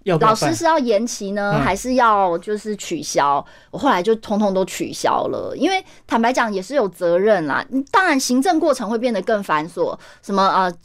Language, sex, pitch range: Chinese, female, 175-240 Hz